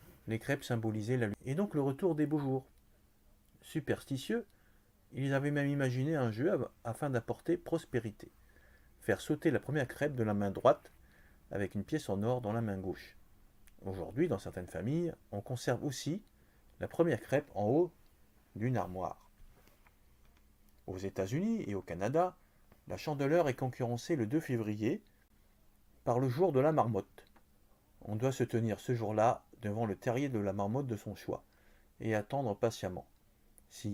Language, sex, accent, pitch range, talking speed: French, male, French, 100-140 Hz, 165 wpm